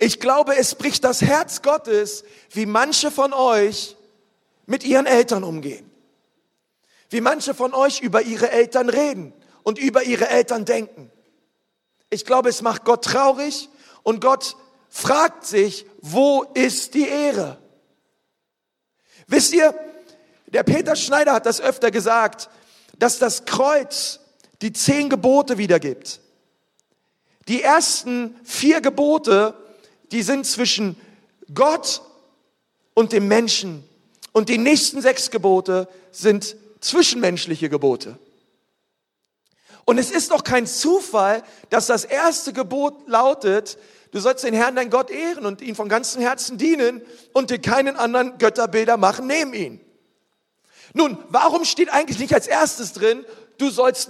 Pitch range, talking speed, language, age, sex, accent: 220-280 Hz, 130 wpm, German, 40-59, male, German